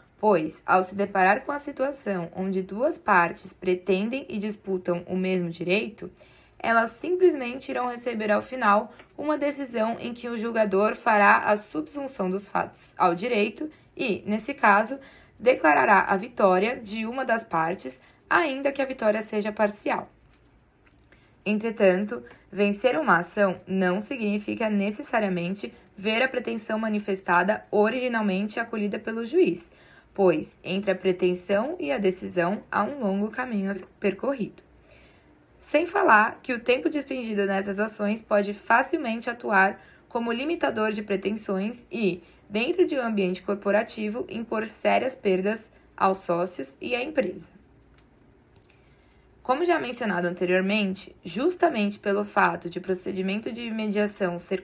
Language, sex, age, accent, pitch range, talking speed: Portuguese, female, 20-39, Brazilian, 190-245 Hz, 130 wpm